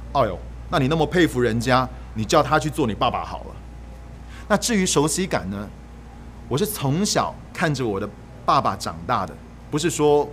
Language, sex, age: Chinese, male, 30-49